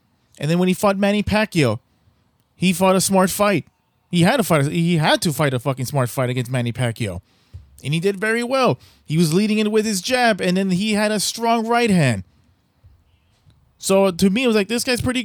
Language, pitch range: English, 150-215 Hz